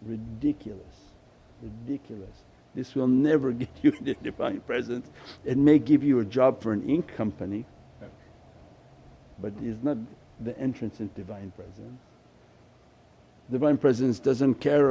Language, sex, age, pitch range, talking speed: English, male, 60-79, 110-155 Hz, 135 wpm